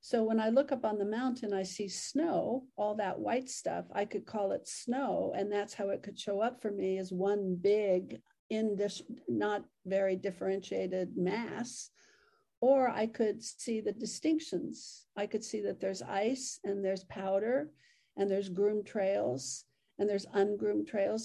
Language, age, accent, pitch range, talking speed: English, 50-69, American, 195-240 Hz, 165 wpm